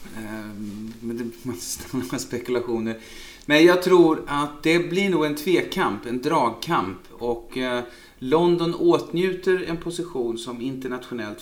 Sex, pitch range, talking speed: male, 110-130 Hz, 110 wpm